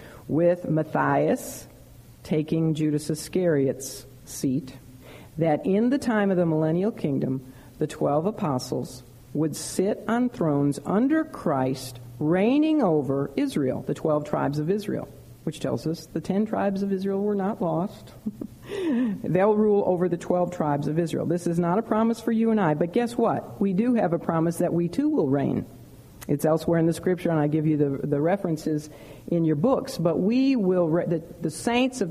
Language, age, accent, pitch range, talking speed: English, 50-69, American, 145-195 Hz, 180 wpm